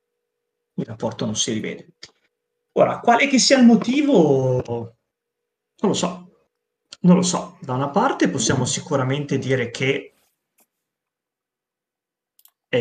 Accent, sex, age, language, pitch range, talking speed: native, male, 30-49, Italian, 120-155 Hz, 115 wpm